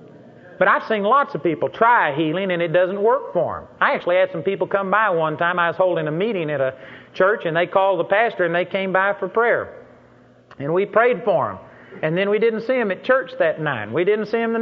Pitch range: 175-235 Hz